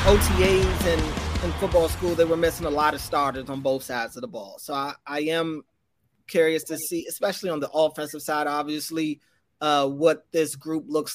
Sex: male